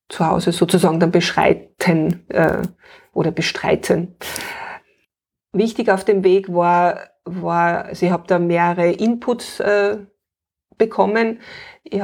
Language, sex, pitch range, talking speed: German, female, 175-200 Hz, 115 wpm